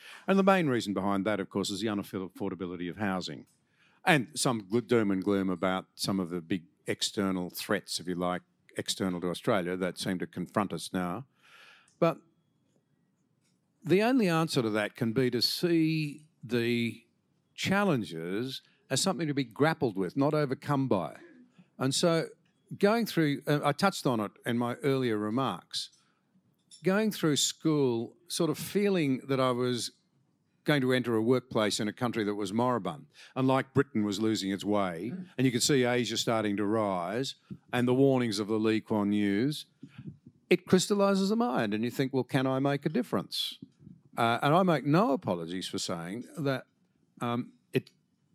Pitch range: 105-150 Hz